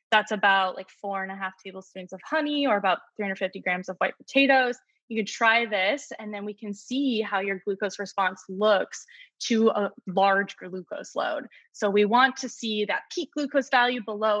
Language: English